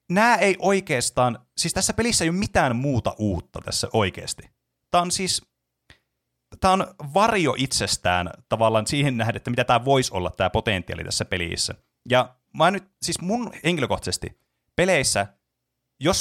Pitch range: 95-145 Hz